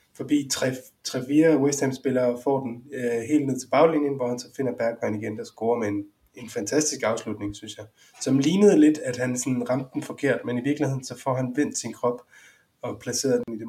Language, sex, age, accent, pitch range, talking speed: Danish, male, 20-39, native, 115-140 Hz, 220 wpm